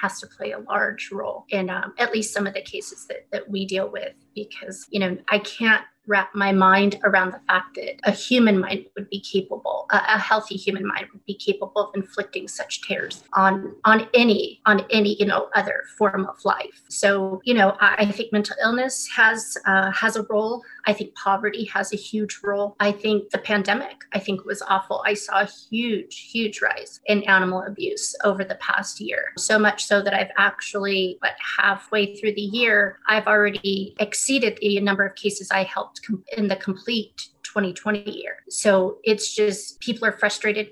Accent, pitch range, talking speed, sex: American, 195-220 Hz, 195 wpm, female